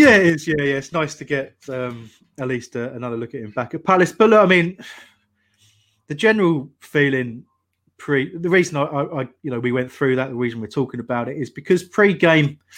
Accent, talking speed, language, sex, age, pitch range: British, 220 wpm, English, male, 30-49, 120-155 Hz